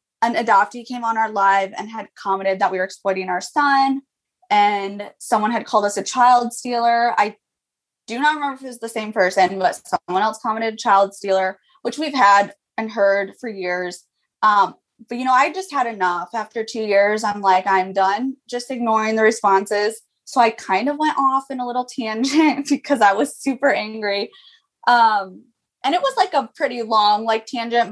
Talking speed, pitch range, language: 195 wpm, 195-245 Hz, English